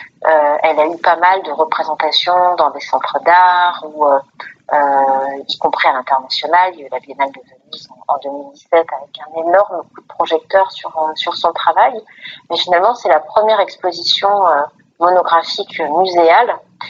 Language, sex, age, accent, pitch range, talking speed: French, female, 40-59, French, 155-190 Hz, 170 wpm